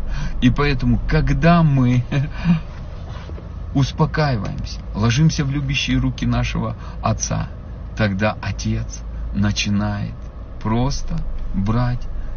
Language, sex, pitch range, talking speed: Russian, male, 95-125 Hz, 80 wpm